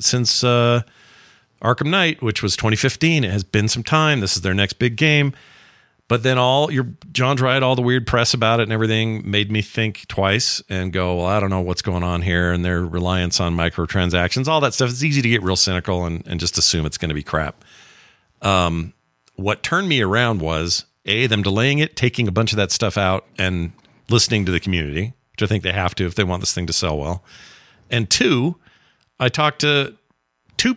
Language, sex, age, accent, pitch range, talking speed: English, male, 50-69, American, 85-125 Hz, 215 wpm